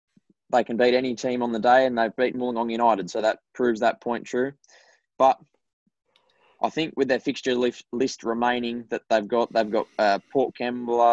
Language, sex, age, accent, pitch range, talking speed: English, male, 20-39, Australian, 115-125 Hz, 195 wpm